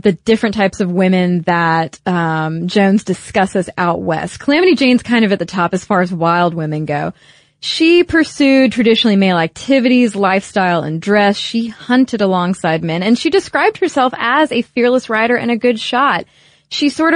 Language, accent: English, American